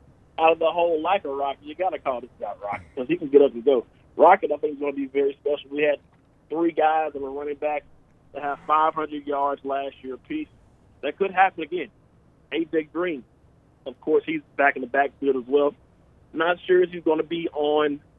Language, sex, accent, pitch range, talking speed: English, male, American, 125-160 Hz, 220 wpm